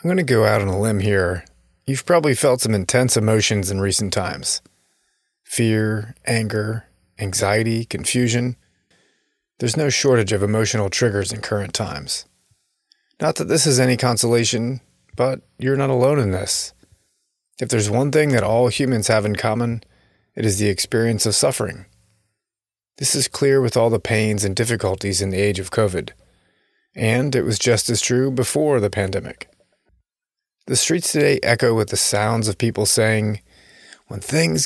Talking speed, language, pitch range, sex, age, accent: 165 wpm, English, 105-125 Hz, male, 30-49, American